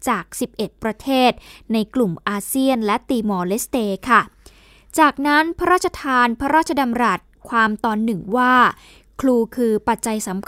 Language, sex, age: Thai, female, 10-29